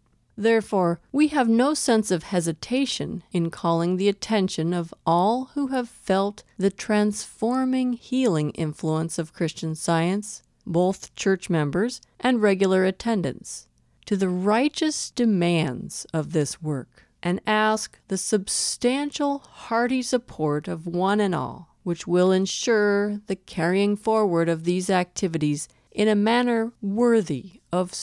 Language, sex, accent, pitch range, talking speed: English, female, American, 160-210 Hz, 130 wpm